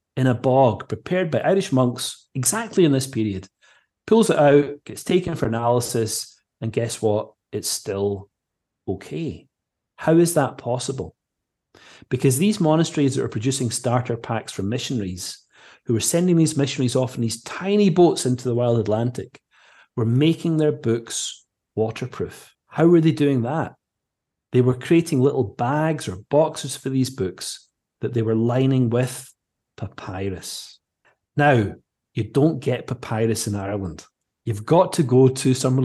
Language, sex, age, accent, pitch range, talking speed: English, male, 30-49, British, 120-160 Hz, 150 wpm